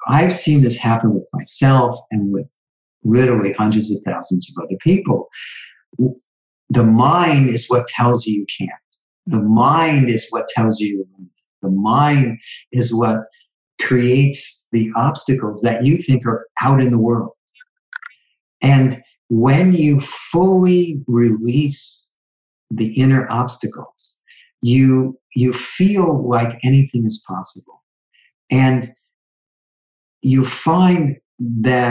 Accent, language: American, English